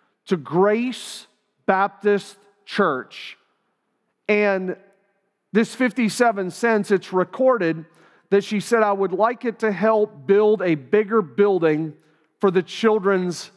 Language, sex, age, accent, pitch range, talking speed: English, male, 40-59, American, 170-205 Hz, 115 wpm